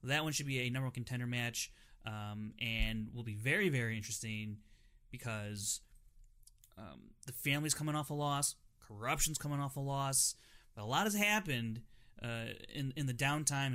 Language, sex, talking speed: English, male, 170 wpm